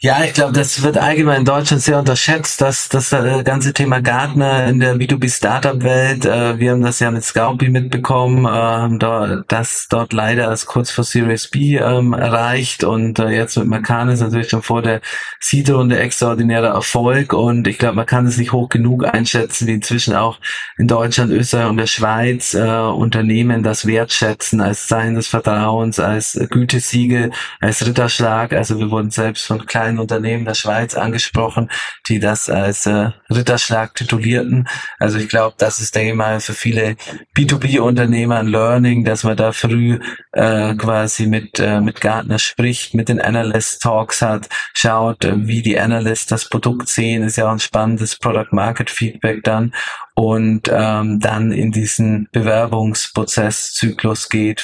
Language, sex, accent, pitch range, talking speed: German, male, German, 110-120 Hz, 165 wpm